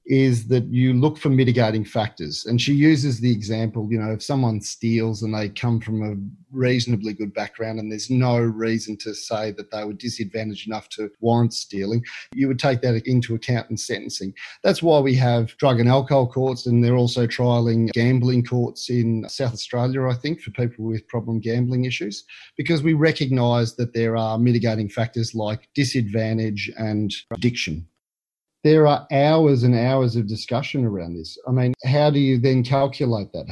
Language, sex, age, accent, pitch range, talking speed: English, male, 40-59, Australian, 110-130 Hz, 180 wpm